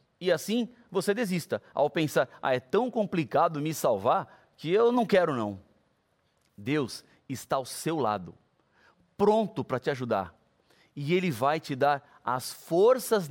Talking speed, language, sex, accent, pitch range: 150 wpm, Portuguese, male, Brazilian, 120-170 Hz